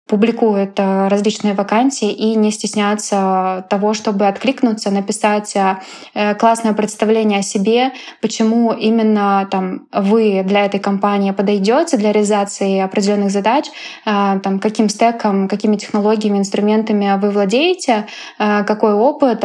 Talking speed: 110 wpm